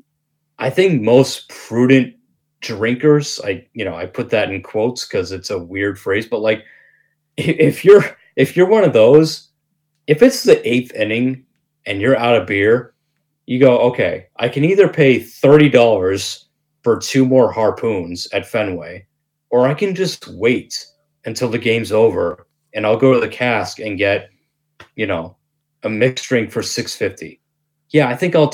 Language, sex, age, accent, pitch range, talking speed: English, male, 30-49, American, 110-150 Hz, 165 wpm